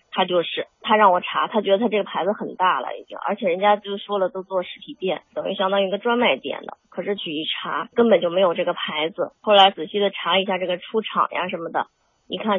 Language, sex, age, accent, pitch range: Chinese, female, 20-39, native, 175-240 Hz